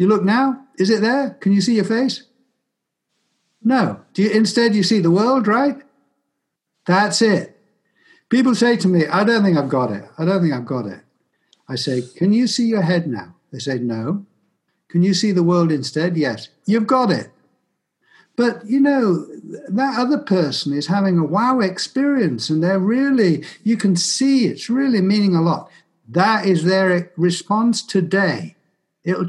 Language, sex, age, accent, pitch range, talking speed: English, male, 60-79, British, 170-225 Hz, 180 wpm